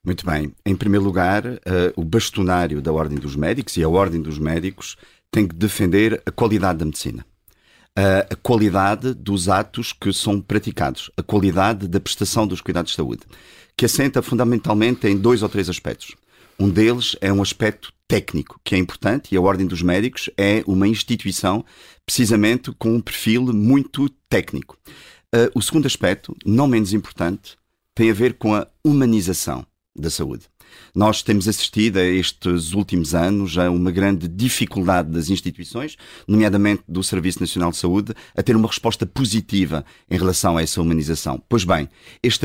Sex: male